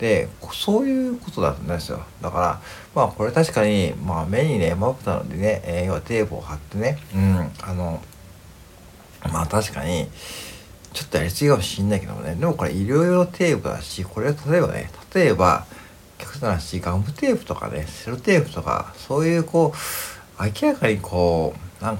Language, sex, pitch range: Japanese, male, 90-130 Hz